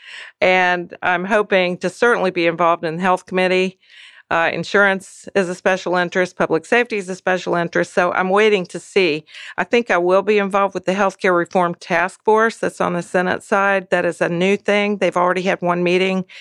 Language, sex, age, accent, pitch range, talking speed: English, female, 50-69, American, 170-190 Hz, 200 wpm